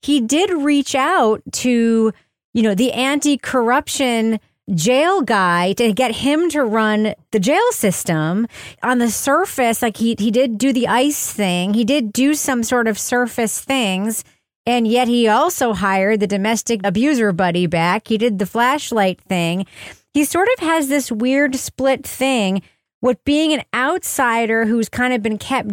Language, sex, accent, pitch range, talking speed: English, female, American, 220-285 Hz, 165 wpm